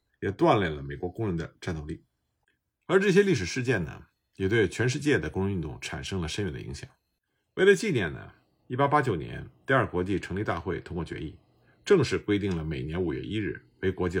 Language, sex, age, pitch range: Chinese, male, 50-69, 90-140 Hz